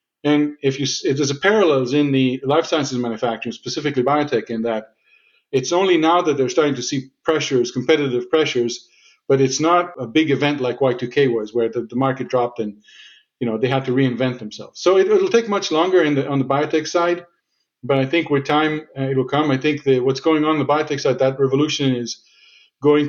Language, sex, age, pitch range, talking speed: English, male, 40-59, 125-150 Hz, 215 wpm